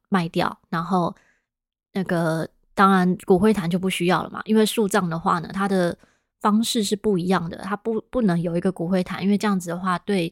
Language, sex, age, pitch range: Chinese, female, 20-39, 180-205 Hz